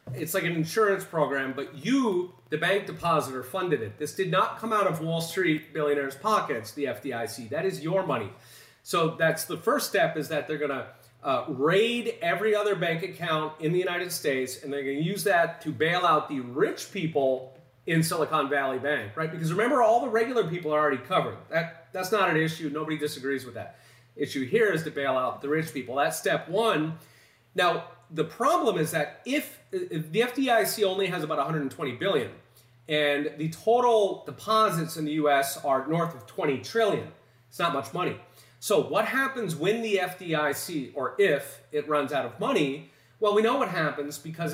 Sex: male